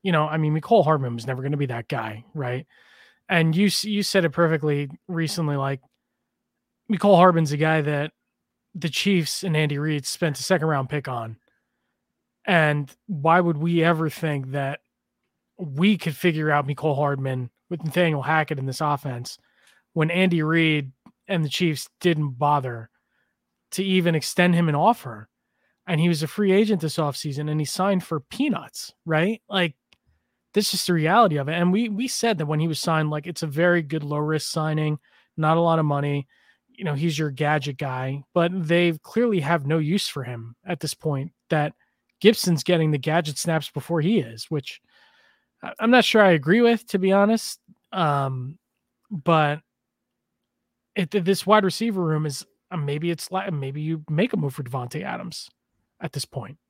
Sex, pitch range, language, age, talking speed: male, 145-185 Hz, English, 20-39, 180 wpm